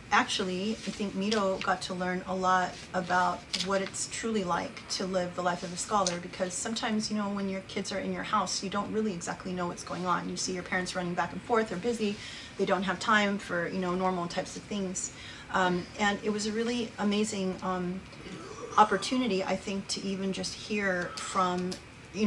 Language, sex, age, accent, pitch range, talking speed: English, female, 30-49, American, 180-205 Hz, 210 wpm